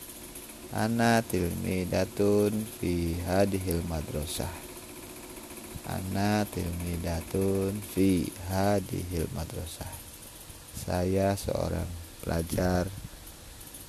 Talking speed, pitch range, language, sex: 50 wpm, 90-110 Hz, Indonesian, male